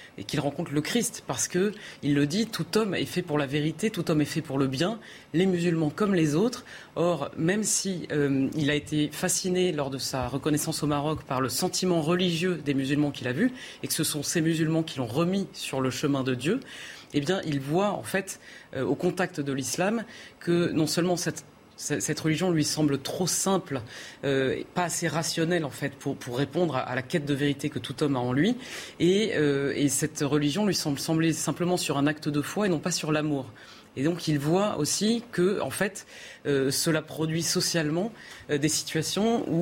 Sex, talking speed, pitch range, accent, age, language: female, 220 wpm, 145-180 Hz, French, 30-49, French